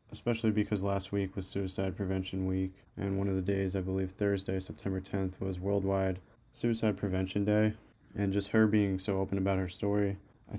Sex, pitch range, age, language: male, 95-105 Hz, 20-39, English